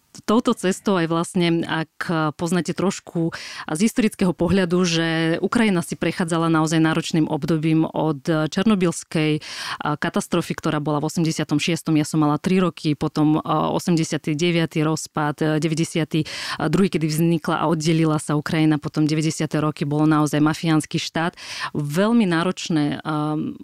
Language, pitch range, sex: Slovak, 155-175 Hz, female